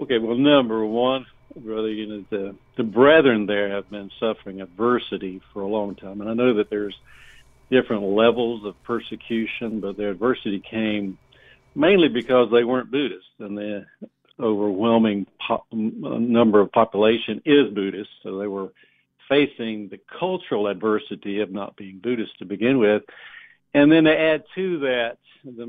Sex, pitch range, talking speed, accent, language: male, 105-120 Hz, 145 wpm, American, English